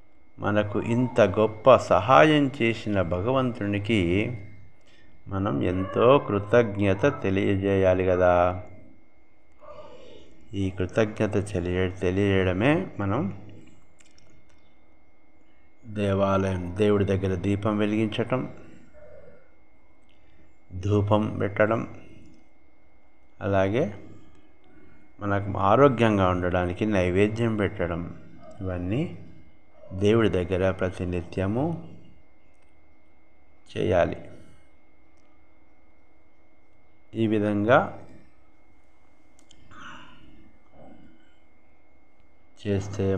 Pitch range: 90-105 Hz